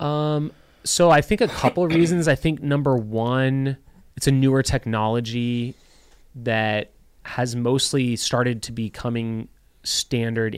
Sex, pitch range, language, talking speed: male, 110-140 Hz, English, 135 wpm